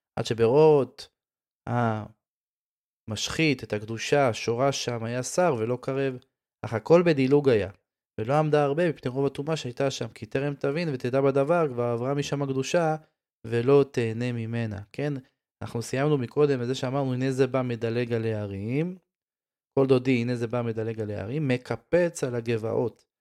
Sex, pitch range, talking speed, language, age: male, 115-145 Hz, 150 wpm, Hebrew, 20-39